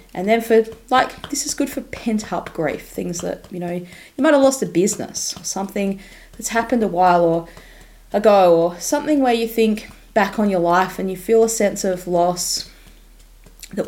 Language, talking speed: English, 200 wpm